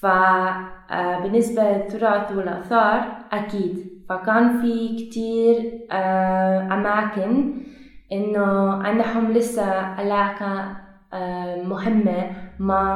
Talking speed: 70 wpm